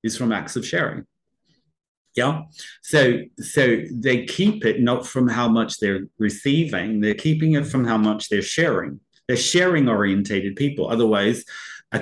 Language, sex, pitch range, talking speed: English, male, 105-130 Hz, 155 wpm